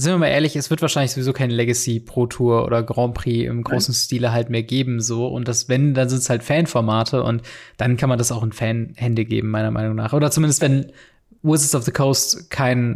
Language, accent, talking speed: German, German, 230 wpm